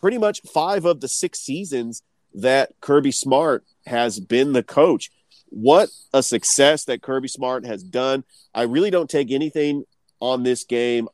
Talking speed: 160 wpm